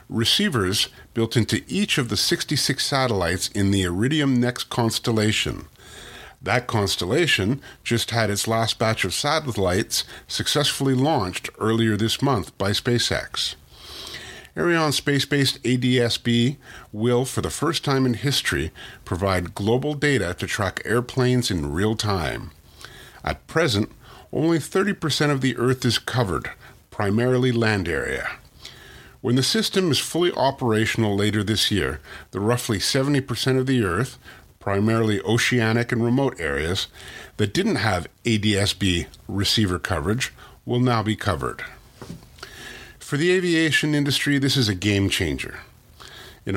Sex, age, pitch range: male, 50-69, 105-130 Hz